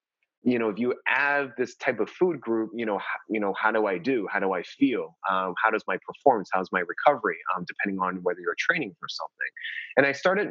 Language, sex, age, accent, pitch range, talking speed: English, male, 20-39, American, 100-125 Hz, 235 wpm